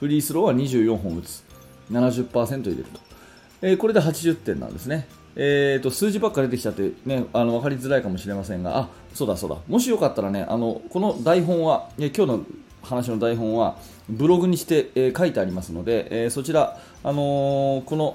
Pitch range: 100-145 Hz